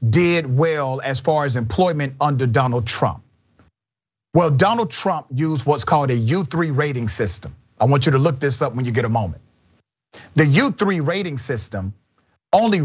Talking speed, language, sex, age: 170 wpm, English, male, 40-59